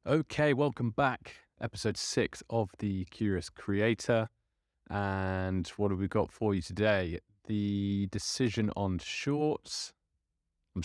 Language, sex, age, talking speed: English, male, 30-49, 120 wpm